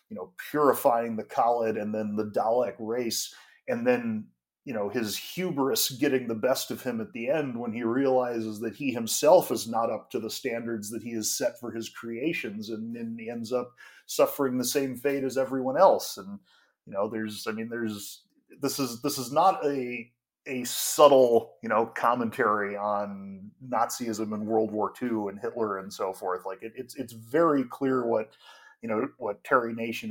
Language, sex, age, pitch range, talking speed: English, male, 30-49, 105-135 Hz, 190 wpm